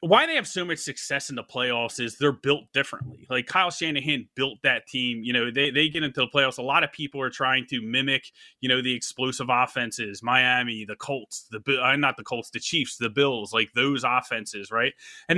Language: English